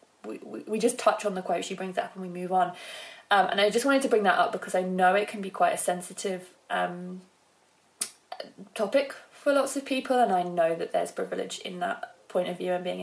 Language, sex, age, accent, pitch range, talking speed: English, female, 20-39, British, 180-230 Hz, 240 wpm